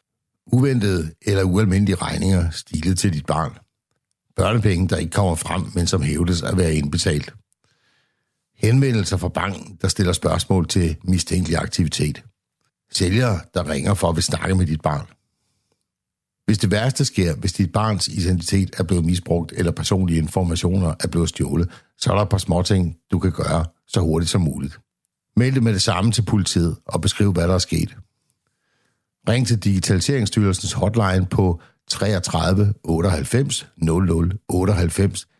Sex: male